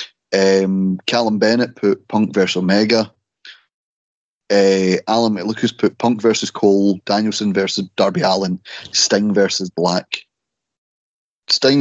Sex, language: male, English